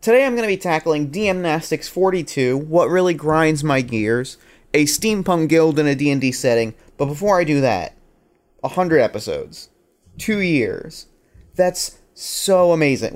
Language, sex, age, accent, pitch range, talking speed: English, male, 30-49, American, 130-175 Hz, 145 wpm